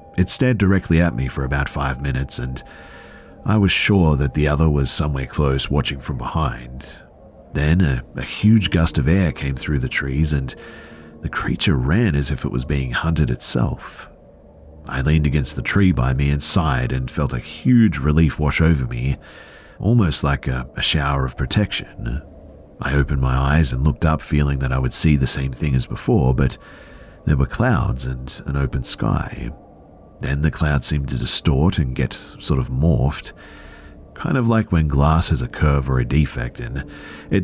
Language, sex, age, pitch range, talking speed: English, male, 40-59, 65-80 Hz, 190 wpm